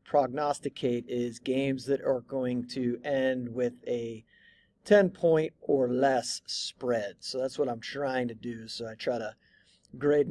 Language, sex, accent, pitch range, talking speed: English, male, American, 130-175 Hz, 155 wpm